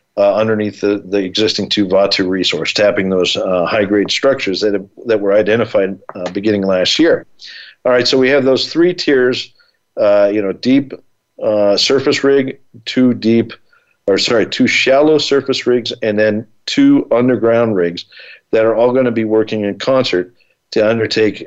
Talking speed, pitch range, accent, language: 170 wpm, 105-130 Hz, American, English